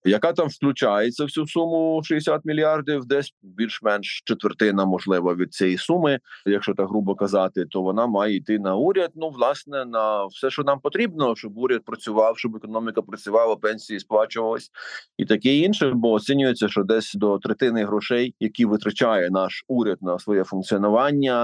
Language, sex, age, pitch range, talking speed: Ukrainian, male, 30-49, 100-135 Hz, 160 wpm